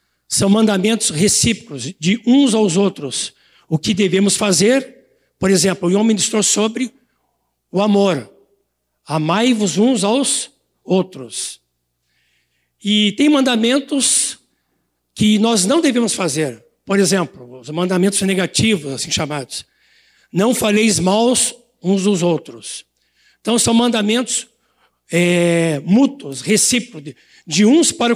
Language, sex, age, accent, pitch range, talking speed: Portuguese, male, 60-79, Brazilian, 170-240 Hz, 110 wpm